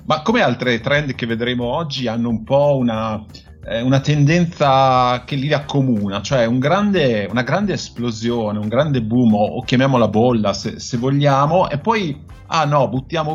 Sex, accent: male, native